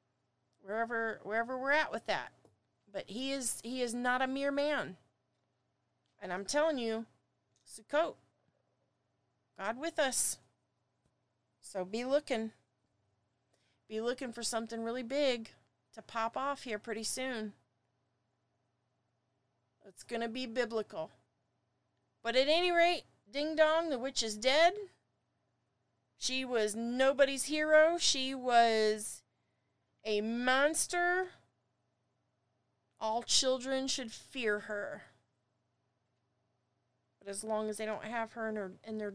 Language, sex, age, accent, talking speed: English, female, 40-59, American, 120 wpm